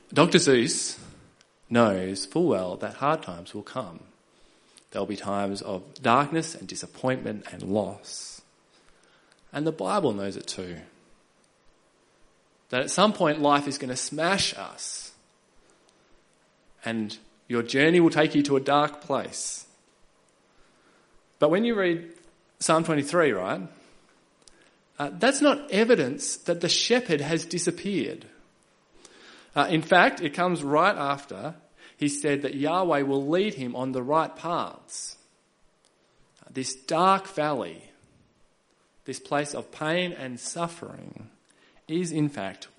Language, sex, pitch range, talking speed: English, male, 120-165 Hz, 130 wpm